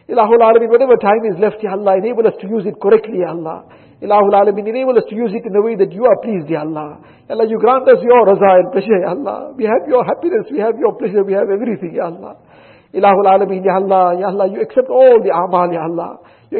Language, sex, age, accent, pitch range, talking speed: English, male, 50-69, Indian, 190-265 Hz, 255 wpm